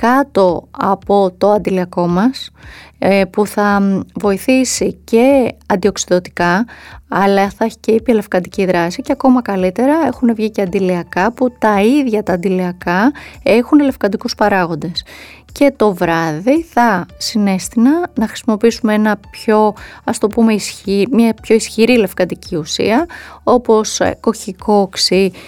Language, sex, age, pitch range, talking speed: Greek, female, 20-39, 195-250 Hz, 120 wpm